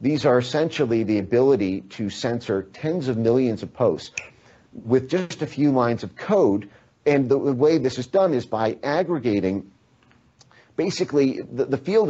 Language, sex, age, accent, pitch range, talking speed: English, male, 40-59, American, 100-130 Hz, 160 wpm